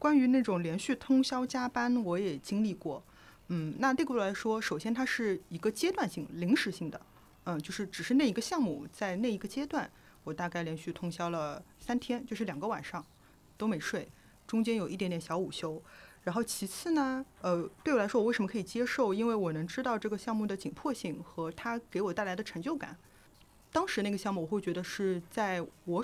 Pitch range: 180-240 Hz